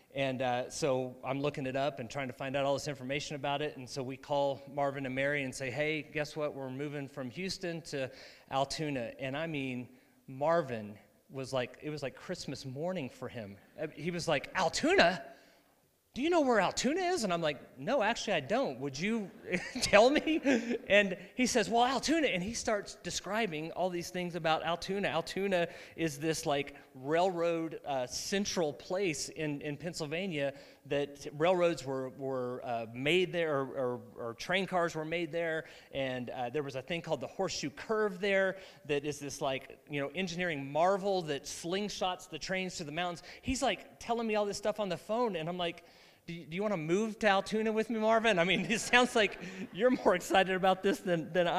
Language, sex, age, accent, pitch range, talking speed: English, male, 30-49, American, 140-190 Hz, 200 wpm